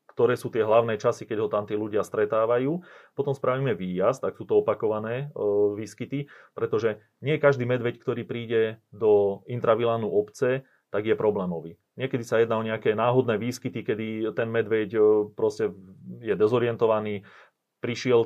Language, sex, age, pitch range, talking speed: Slovak, male, 30-49, 100-125 Hz, 150 wpm